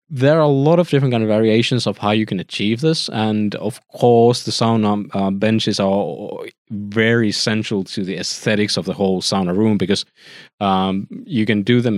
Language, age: English, 20-39